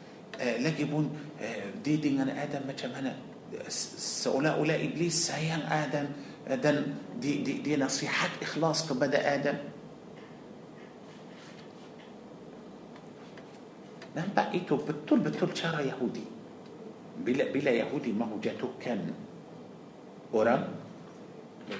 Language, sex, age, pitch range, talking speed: Malay, male, 50-69, 150-220 Hz, 95 wpm